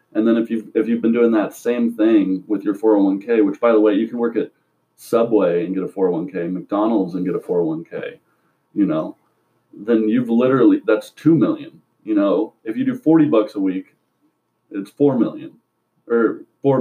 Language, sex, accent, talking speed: English, male, American, 195 wpm